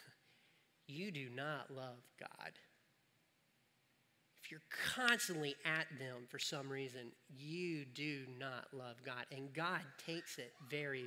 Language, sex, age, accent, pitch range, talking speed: English, male, 40-59, American, 155-235 Hz, 125 wpm